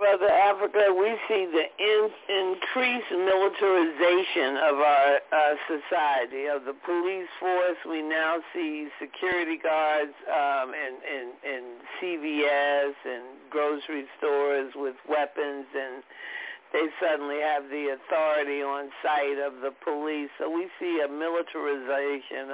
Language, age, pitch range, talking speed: English, 50-69, 145-180 Hz, 120 wpm